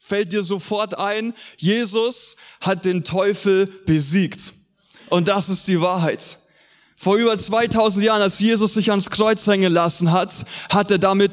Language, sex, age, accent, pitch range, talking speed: German, male, 20-39, German, 180-215 Hz, 155 wpm